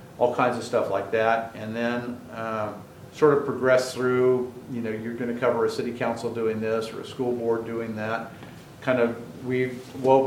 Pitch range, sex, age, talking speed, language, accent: 115-130 Hz, male, 50-69, 195 wpm, English, American